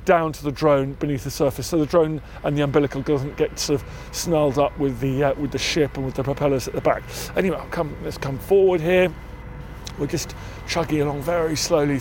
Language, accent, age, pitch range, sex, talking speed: English, British, 40-59, 140-175 Hz, male, 220 wpm